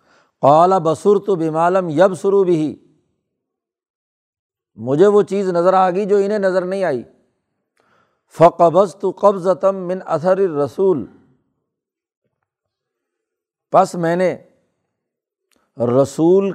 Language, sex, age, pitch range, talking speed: Urdu, male, 60-79, 160-195 Hz, 95 wpm